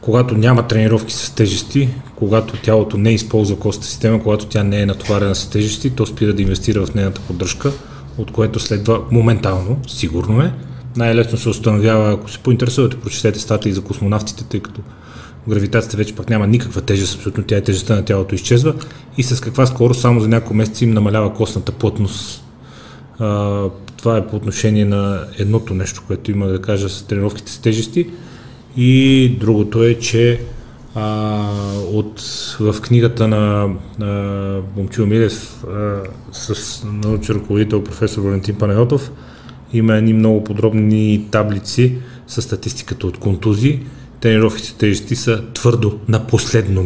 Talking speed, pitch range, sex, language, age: 145 wpm, 105-120 Hz, male, Bulgarian, 30-49